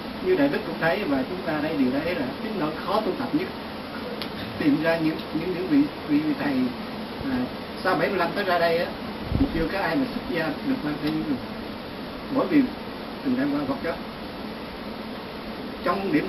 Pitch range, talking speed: 205-275 Hz, 200 wpm